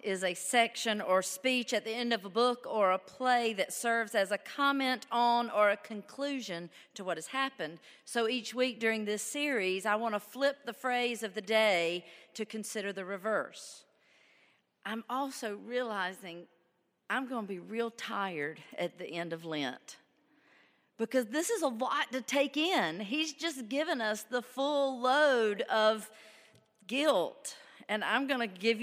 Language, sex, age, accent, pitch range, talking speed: English, female, 40-59, American, 210-260 Hz, 170 wpm